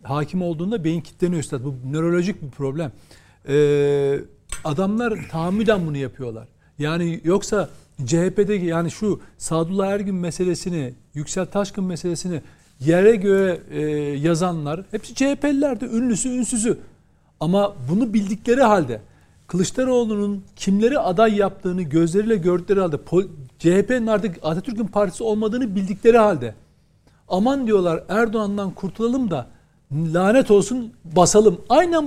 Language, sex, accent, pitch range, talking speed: Turkish, male, native, 170-230 Hz, 110 wpm